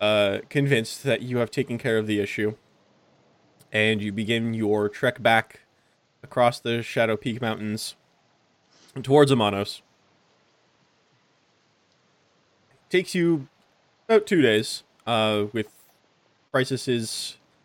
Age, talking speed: 20-39, 105 wpm